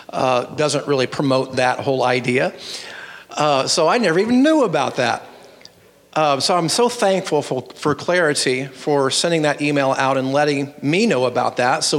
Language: English